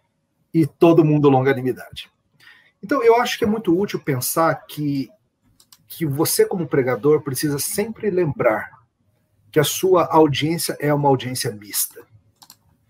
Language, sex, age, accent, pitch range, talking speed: Portuguese, male, 40-59, Brazilian, 130-165 Hz, 130 wpm